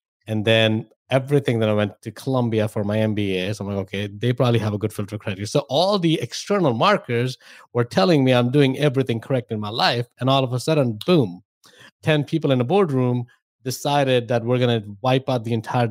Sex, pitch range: male, 110-140 Hz